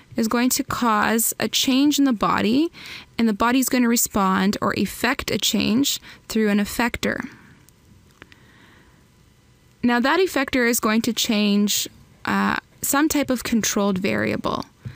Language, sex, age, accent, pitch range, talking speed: English, female, 10-29, American, 205-255 Hz, 140 wpm